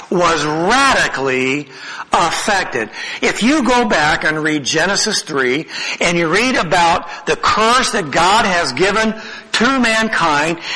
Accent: American